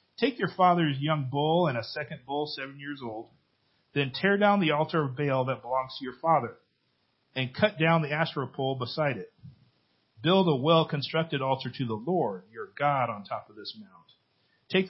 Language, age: English, 40-59